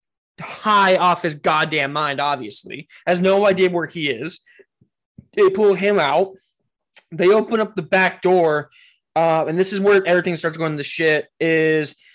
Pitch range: 150-180 Hz